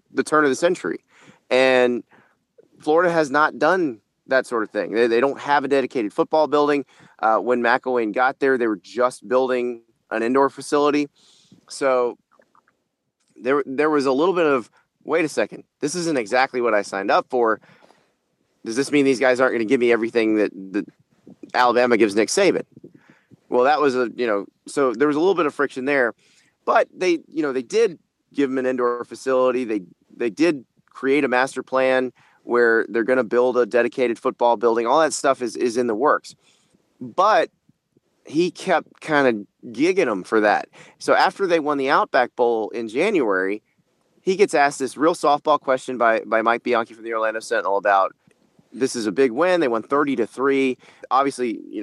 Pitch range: 120-145 Hz